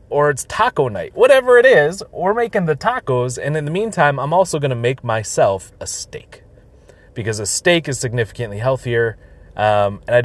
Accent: American